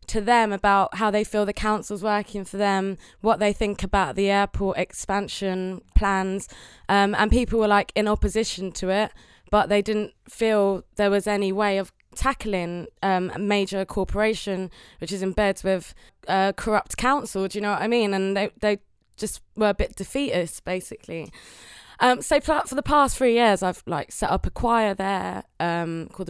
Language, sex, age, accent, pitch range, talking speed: English, female, 20-39, British, 185-220 Hz, 185 wpm